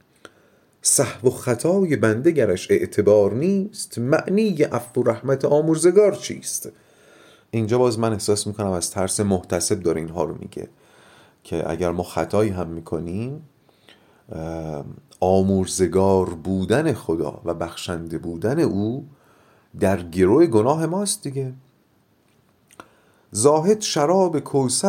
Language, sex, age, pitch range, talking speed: Persian, male, 40-59, 95-145 Hz, 110 wpm